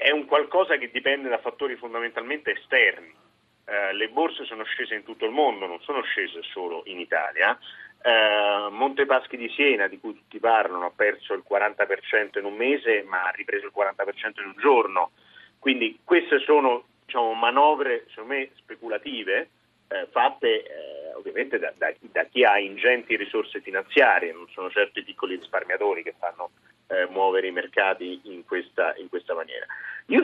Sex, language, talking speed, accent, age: male, Italian, 170 wpm, native, 40-59